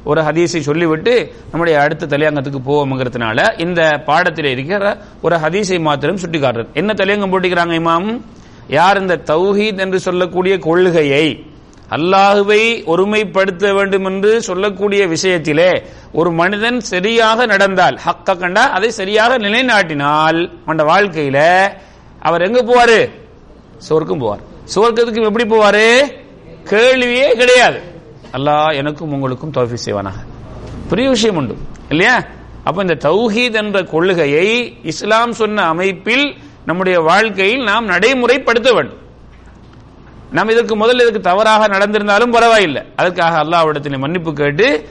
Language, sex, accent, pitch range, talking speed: English, male, Indian, 155-215 Hz, 110 wpm